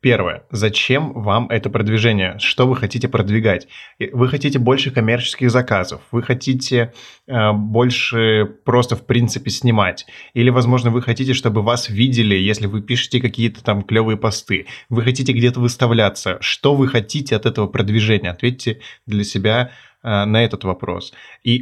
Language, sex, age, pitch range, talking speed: Russian, male, 20-39, 105-125 Hz, 150 wpm